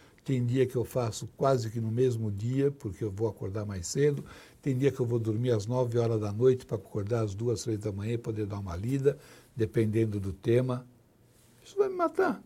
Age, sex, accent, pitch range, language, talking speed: 60-79, male, Brazilian, 120-165 Hz, Portuguese, 220 wpm